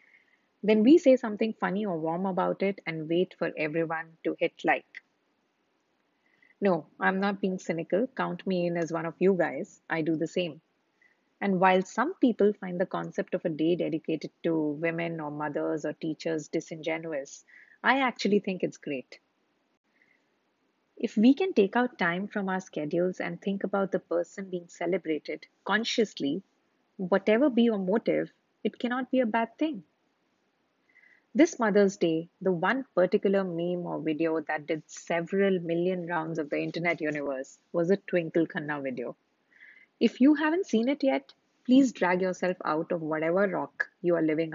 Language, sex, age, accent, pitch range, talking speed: English, female, 30-49, Indian, 165-225 Hz, 165 wpm